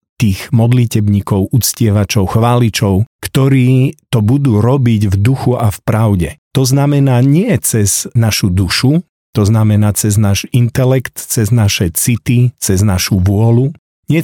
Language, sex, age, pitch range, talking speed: Slovak, male, 50-69, 100-125 Hz, 130 wpm